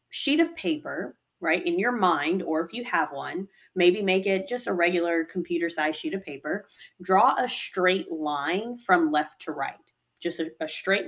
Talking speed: 190 wpm